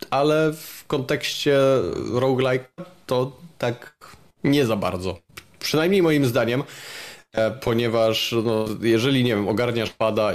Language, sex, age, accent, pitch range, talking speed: Polish, male, 20-39, native, 105-120 Hz, 110 wpm